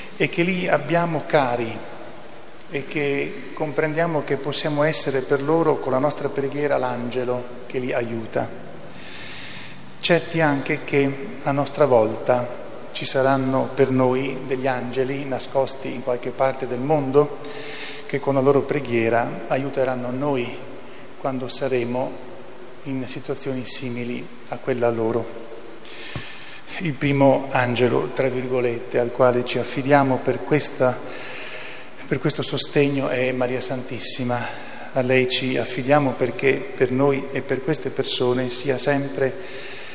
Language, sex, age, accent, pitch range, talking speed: Italian, male, 40-59, native, 125-140 Hz, 125 wpm